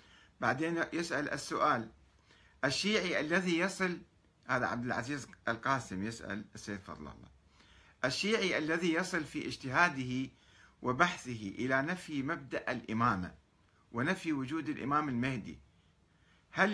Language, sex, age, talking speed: Arabic, male, 50-69, 105 wpm